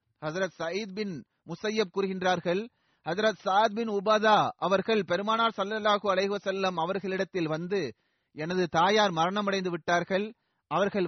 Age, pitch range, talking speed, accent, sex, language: 30-49, 160-210 Hz, 115 wpm, native, male, Tamil